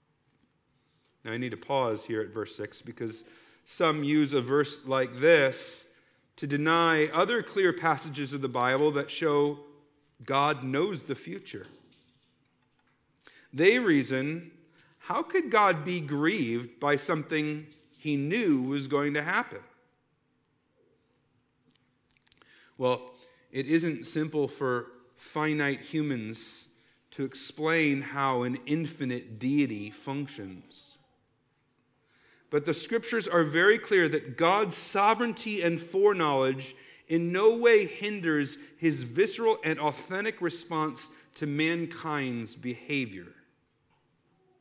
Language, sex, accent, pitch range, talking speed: English, male, American, 135-165 Hz, 110 wpm